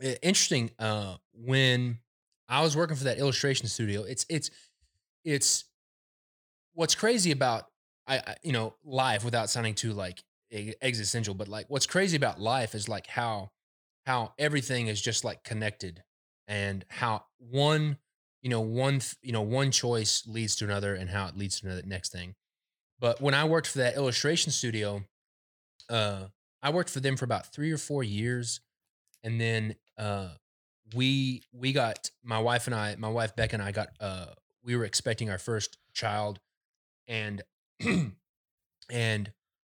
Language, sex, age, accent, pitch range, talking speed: English, male, 20-39, American, 100-130 Hz, 160 wpm